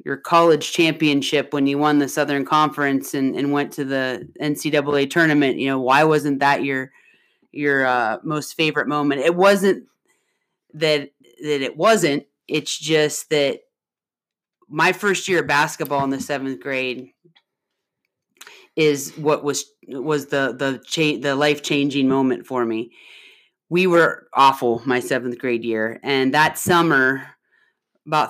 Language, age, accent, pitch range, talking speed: English, 30-49, American, 135-155 Hz, 145 wpm